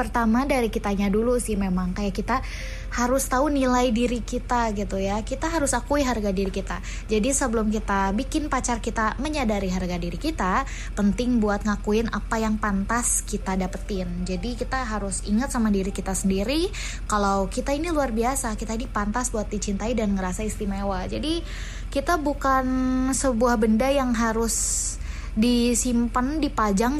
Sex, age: female, 20-39